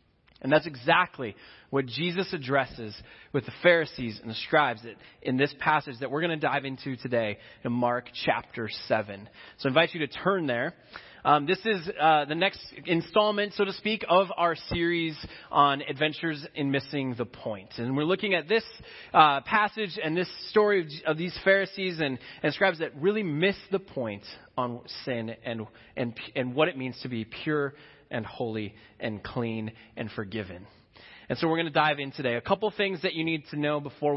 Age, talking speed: 20-39, 190 wpm